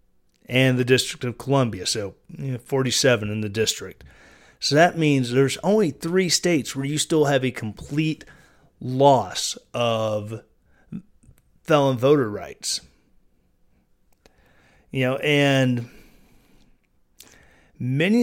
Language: English